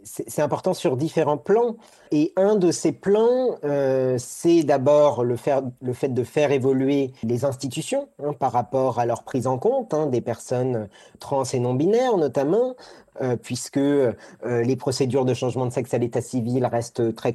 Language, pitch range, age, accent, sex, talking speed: French, 125-155 Hz, 40-59, French, male, 175 wpm